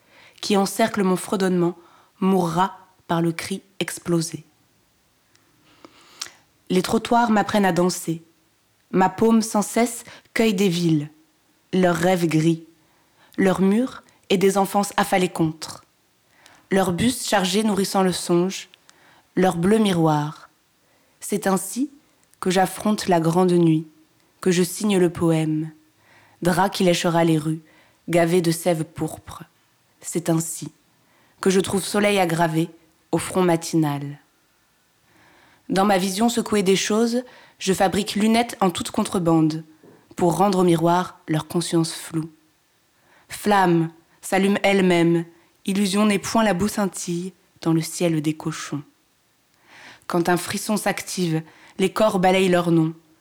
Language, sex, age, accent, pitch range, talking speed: French, female, 20-39, French, 165-195 Hz, 125 wpm